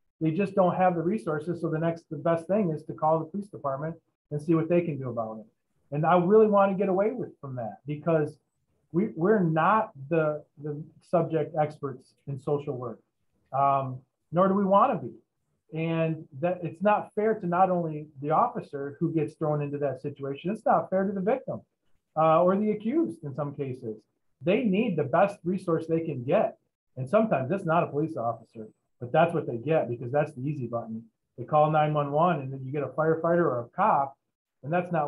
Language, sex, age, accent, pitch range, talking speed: English, male, 40-59, American, 135-170 Hz, 205 wpm